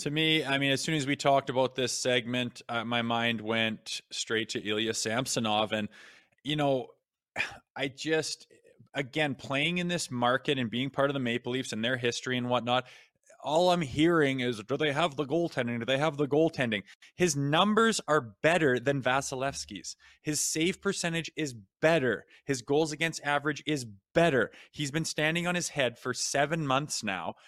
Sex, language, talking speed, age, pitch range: male, English, 180 wpm, 20-39, 125-150 Hz